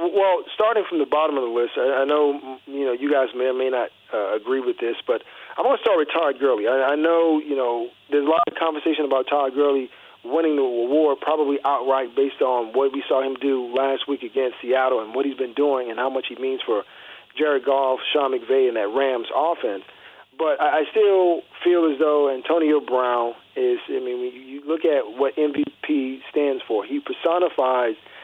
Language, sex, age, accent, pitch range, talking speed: English, male, 40-59, American, 135-170 Hz, 210 wpm